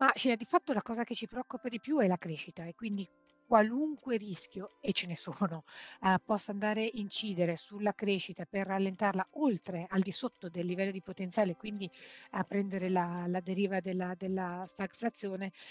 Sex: female